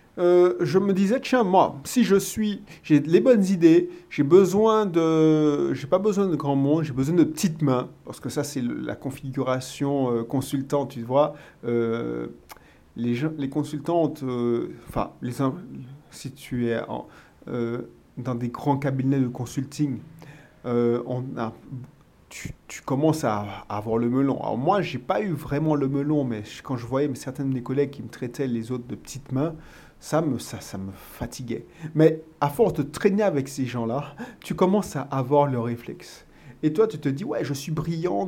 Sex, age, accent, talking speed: male, 40-59, French, 190 wpm